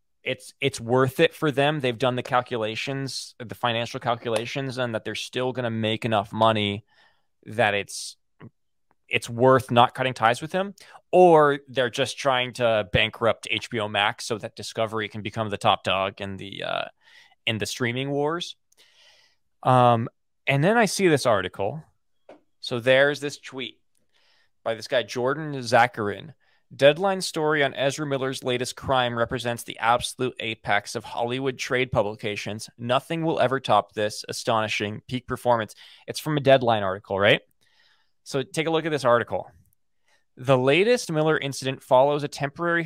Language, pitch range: English, 115-135 Hz